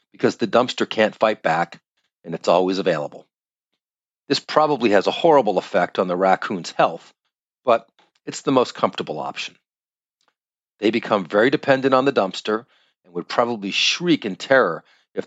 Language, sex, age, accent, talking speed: English, male, 40-59, American, 155 wpm